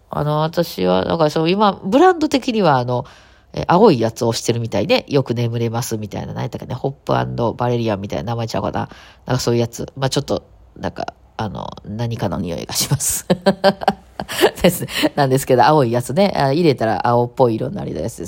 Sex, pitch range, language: female, 120-170 Hz, Japanese